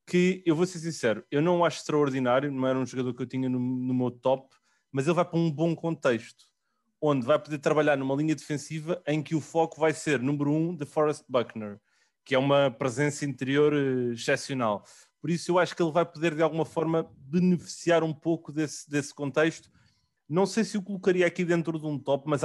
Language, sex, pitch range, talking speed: English, male, 130-160 Hz, 210 wpm